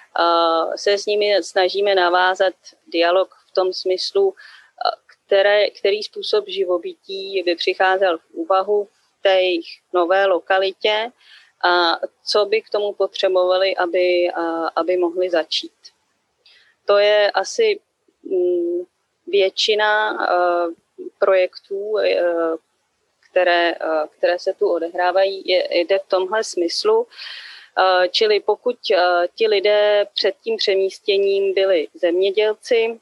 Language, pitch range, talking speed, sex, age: Czech, 180-215 Hz, 100 wpm, female, 30-49